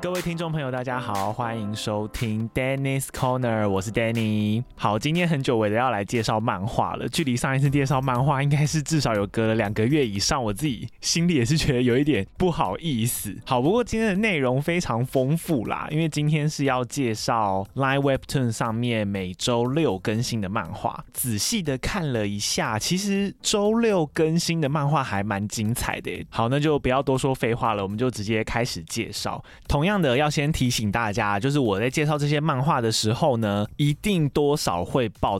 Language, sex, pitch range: Chinese, male, 110-150 Hz